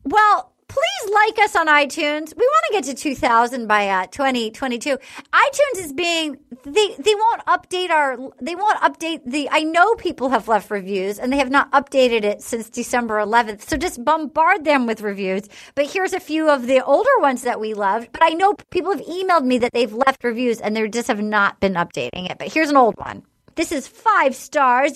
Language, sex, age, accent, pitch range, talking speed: English, female, 30-49, American, 235-325 Hz, 210 wpm